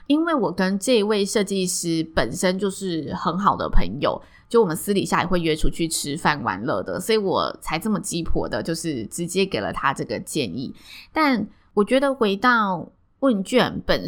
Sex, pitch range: female, 170-225 Hz